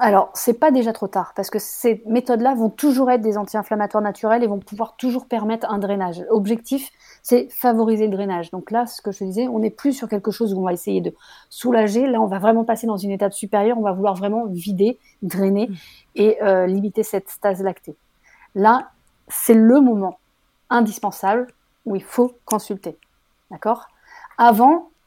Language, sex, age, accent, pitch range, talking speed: French, female, 30-49, French, 195-235 Hz, 190 wpm